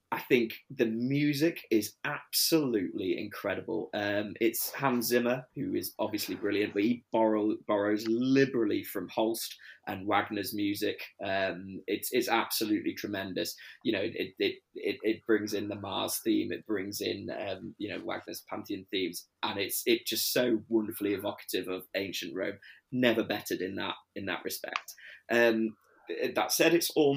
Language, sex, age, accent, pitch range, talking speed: English, male, 20-39, British, 105-125 Hz, 160 wpm